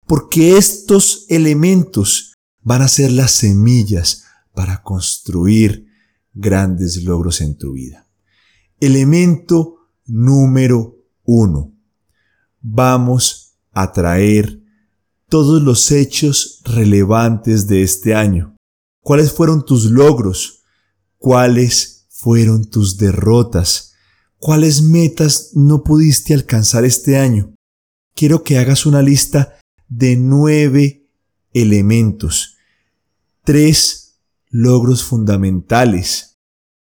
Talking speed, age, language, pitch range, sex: 90 wpm, 30-49, Spanish, 95-130 Hz, male